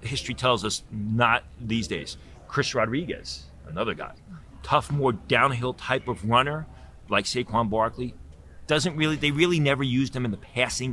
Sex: male